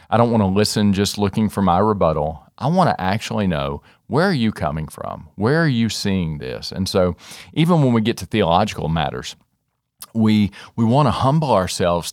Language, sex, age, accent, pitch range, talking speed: English, male, 40-59, American, 90-115 Hz, 200 wpm